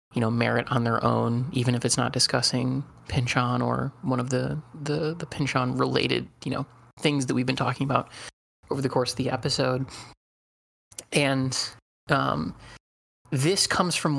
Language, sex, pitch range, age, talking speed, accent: English, male, 120-150 Hz, 20-39, 165 wpm, American